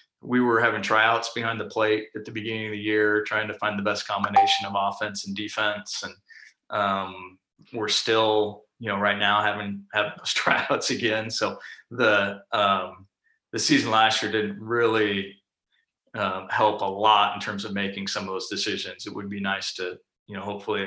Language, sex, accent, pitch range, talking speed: English, male, American, 100-110 Hz, 185 wpm